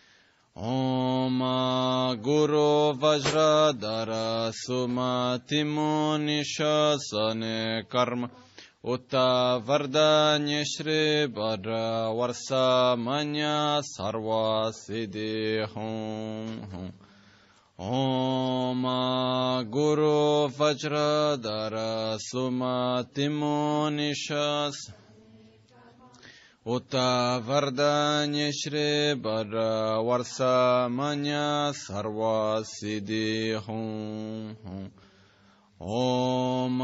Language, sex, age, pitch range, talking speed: Italian, male, 20-39, 110-145 Hz, 45 wpm